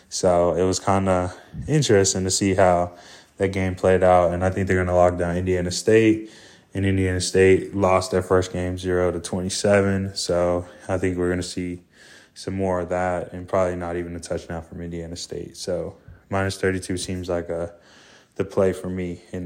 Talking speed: 195 wpm